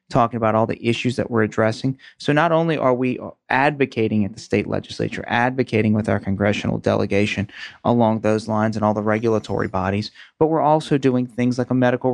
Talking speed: 195 wpm